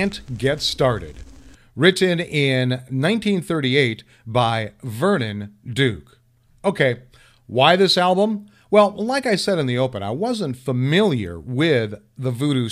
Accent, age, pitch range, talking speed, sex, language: American, 50-69, 120-160 Hz, 125 wpm, male, English